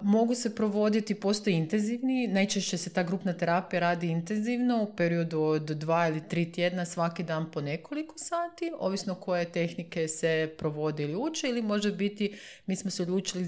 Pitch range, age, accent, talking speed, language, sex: 160-200 Hz, 30-49, native, 170 wpm, Croatian, female